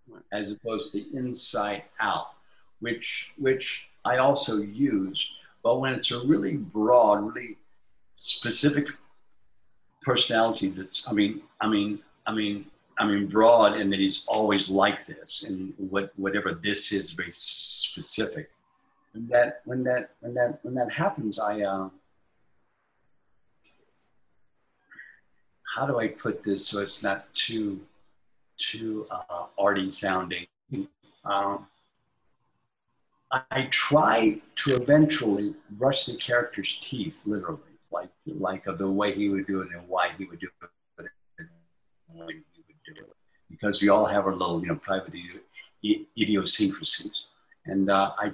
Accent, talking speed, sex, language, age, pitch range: American, 135 wpm, male, English, 50-69, 100-125 Hz